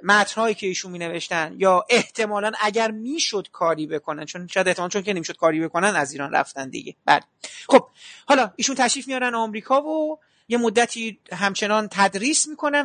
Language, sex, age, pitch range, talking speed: Persian, male, 30-49, 185-250 Hz, 175 wpm